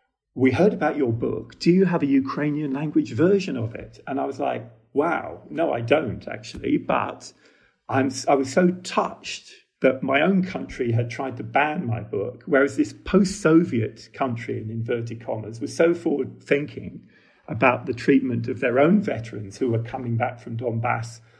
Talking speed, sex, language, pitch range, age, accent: 175 wpm, male, English, 115-135 Hz, 40-59, British